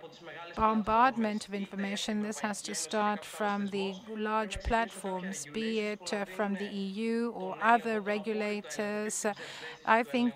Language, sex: Greek, female